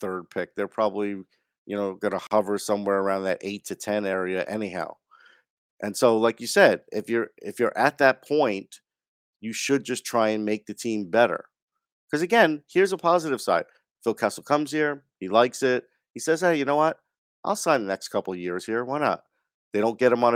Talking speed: 205 wpm